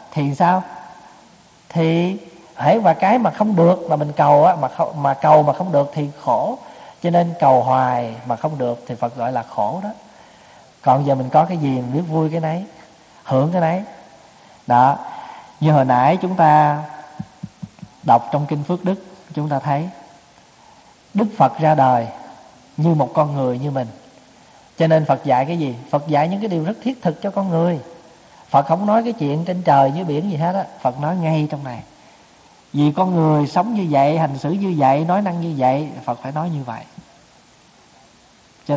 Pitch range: 135-175 Hz